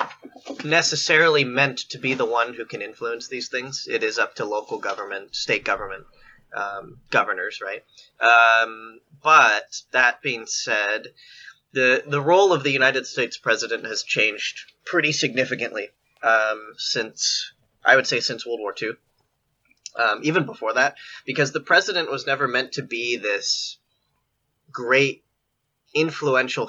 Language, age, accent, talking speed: Czech, 20-39, American, 140 wpm